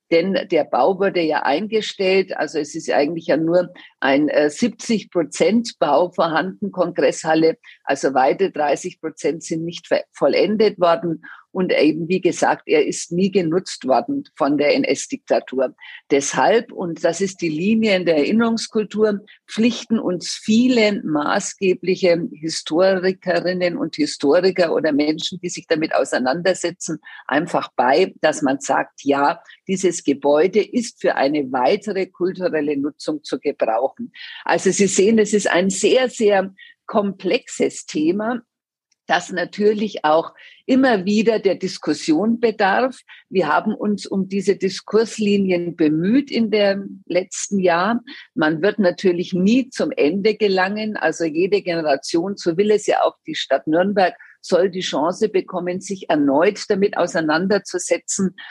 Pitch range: 170-220 Hz